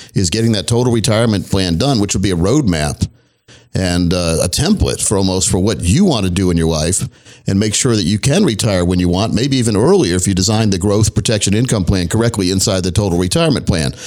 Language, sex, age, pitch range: English, male, 50-69, 100-130 Hz